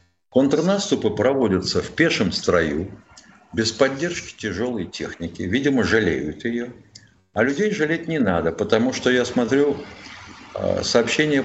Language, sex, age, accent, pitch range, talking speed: Russian, male, 60-79, native, 110-150 Hz, 115 wpm